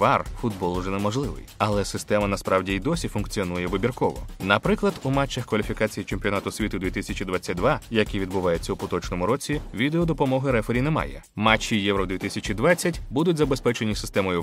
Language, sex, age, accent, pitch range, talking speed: Ukrainian, male, 20-39, native, 100-145 Hz, 135 wpm